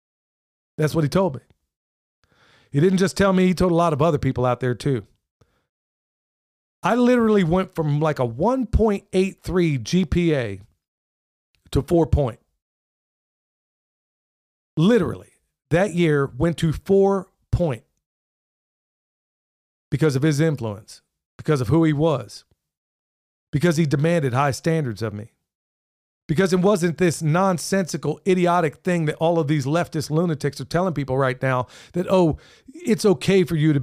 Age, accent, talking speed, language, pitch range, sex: 40-59, American, 140 wpm, English, 130-185 Hz, male